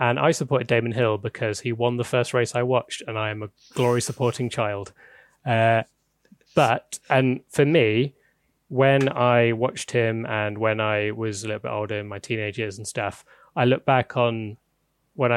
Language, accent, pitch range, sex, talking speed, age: English, British, 110-125 Hz, male, 185 wpm, 20-39